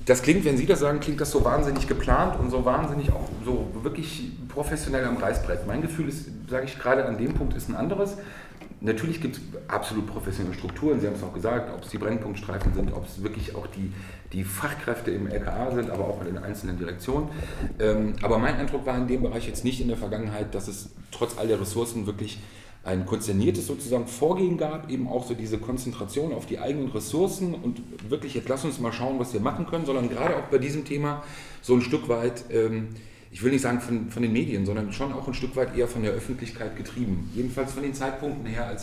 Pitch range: 105-130 Hz